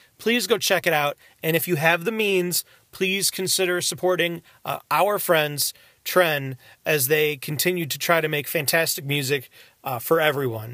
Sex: male